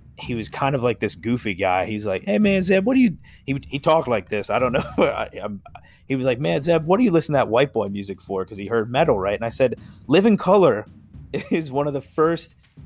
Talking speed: 265 wpm